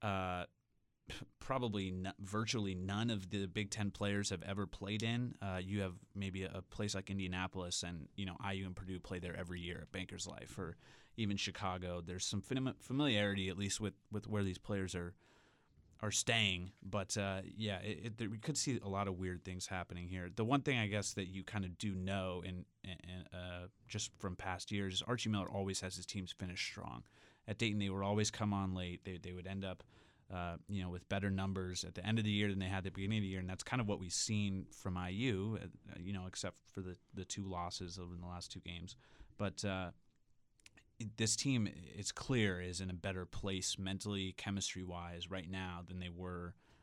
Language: English